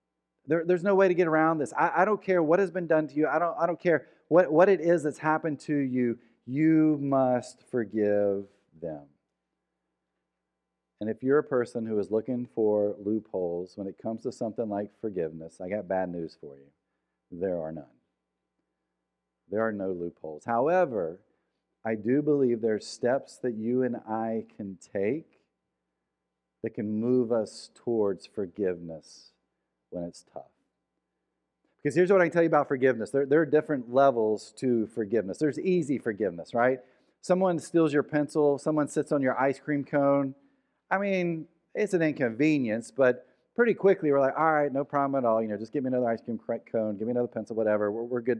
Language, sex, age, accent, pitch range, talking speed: English, male, 40-59, American, 100-150 Hz, 185 wpm